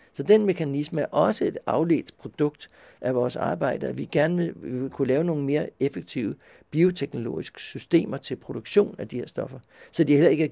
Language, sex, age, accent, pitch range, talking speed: Danish, male, 60-79, native, 130-160 Hz, 200 wpm